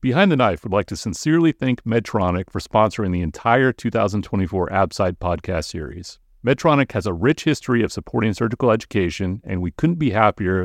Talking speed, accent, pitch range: 175 wpm, American, 90-130 Hz